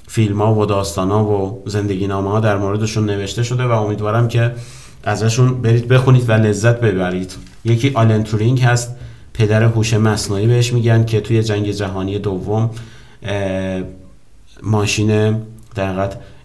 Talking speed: 140 wpm